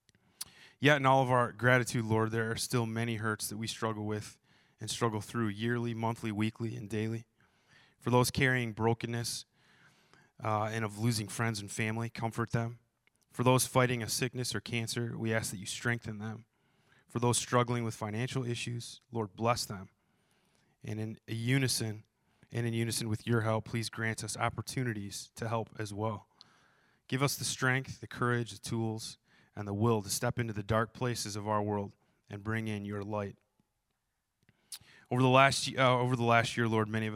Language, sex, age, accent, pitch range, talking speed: English, male, 20-39, American, 110-120 Hz, 175 wpm